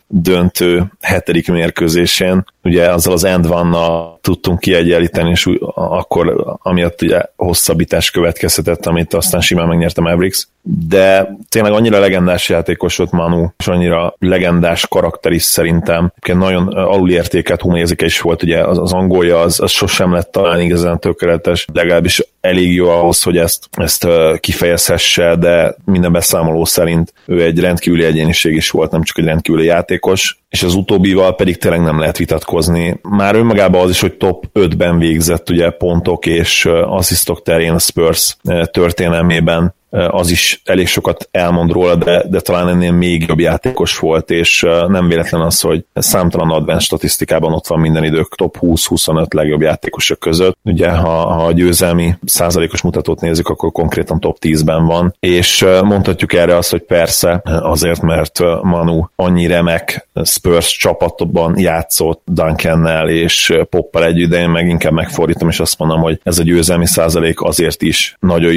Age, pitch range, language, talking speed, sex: 30-49, 85-90 Hz, Hungarian, 150 wpm, male